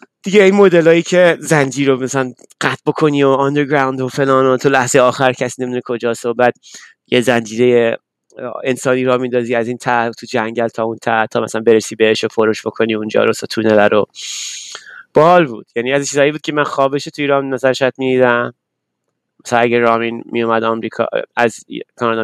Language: Persian